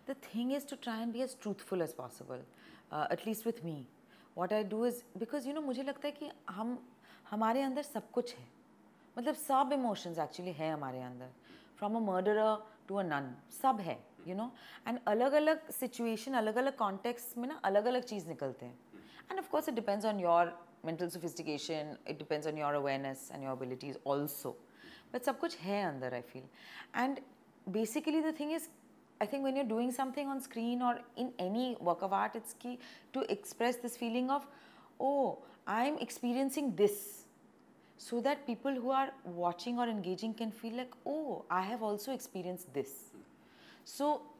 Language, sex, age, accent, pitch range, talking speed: Hindi, female, 30-49, native, 180-260 Hz, 180 wpm